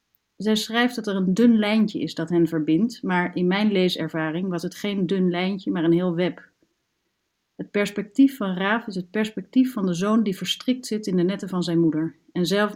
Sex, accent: female, Dutch